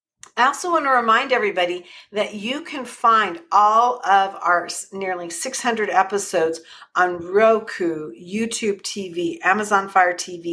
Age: 50-69